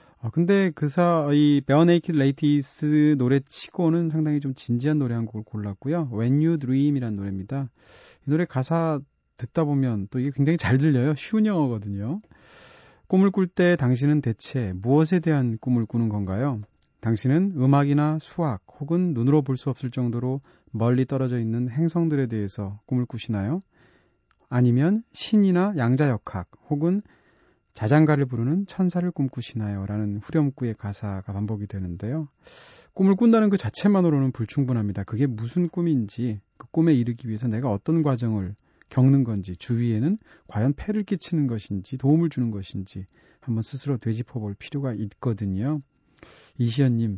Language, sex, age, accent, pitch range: Korean, male, 30-49, native, 115-155 Hz